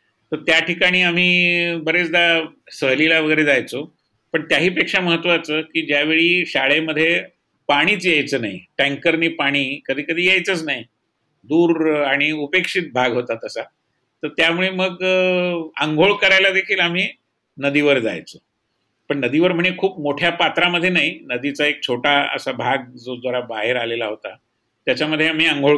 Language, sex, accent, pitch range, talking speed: Marathi, male, native, 140-175 Hz, 120 wpm